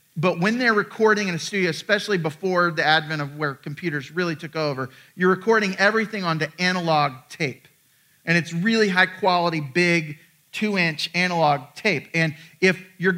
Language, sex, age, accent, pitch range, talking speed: English, male, 40-59, American, 150-185 Hz, 160 wpm